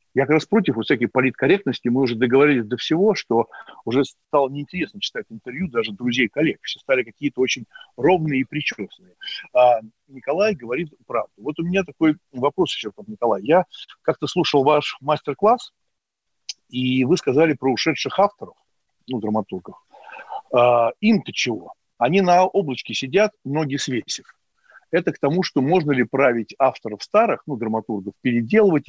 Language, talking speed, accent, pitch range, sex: Russian, 145 wpm, native, 125-170 Hz, male